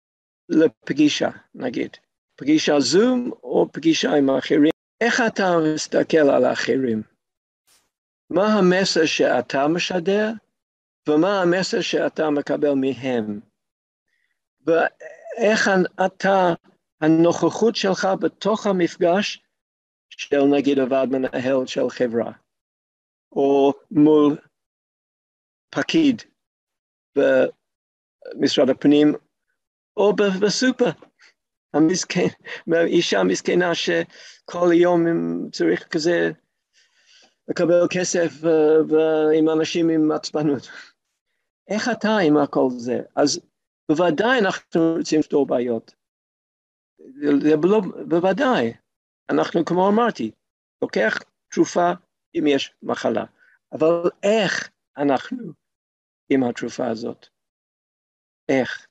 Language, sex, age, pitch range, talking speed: Hebrew, male, 50-69, 140-195 Hz, 85 wpm